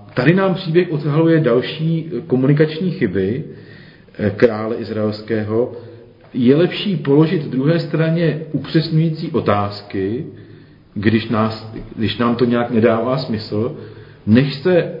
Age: 50-69